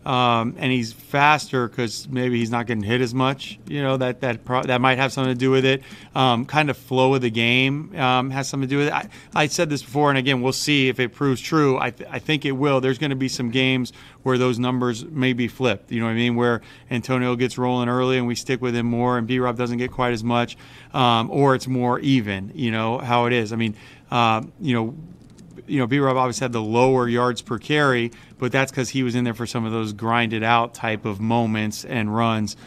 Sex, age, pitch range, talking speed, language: male, 30-49, 115-130 Hz, 255 wpm, English